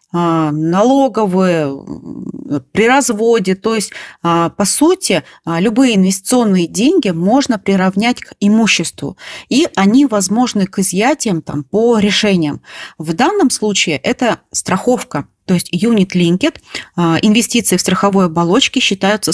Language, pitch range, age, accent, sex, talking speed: Russian, 180-230 Hz, 30-49, native, female, 110 wpm